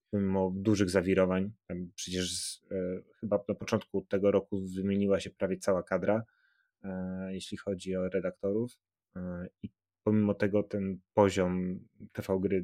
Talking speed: 140 wpm